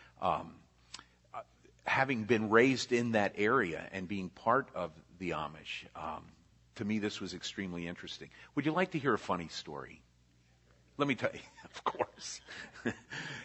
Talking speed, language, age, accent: 150 wpm, Italian, 50-69, American